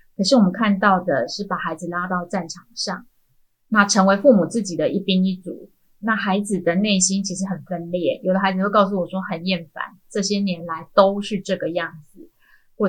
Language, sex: Chinese, female